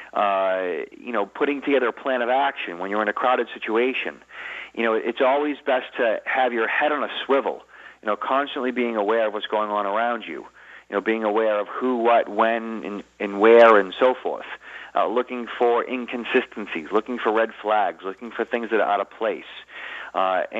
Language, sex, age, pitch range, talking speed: English, male, 40-59, 110-130 Hz, 200 wpm